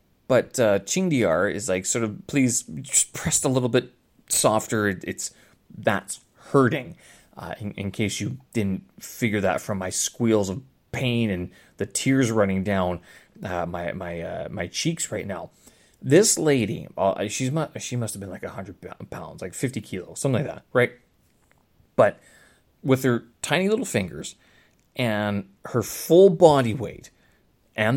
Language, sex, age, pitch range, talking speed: English, male, 30-49, 105-140 Hz, 160 wpm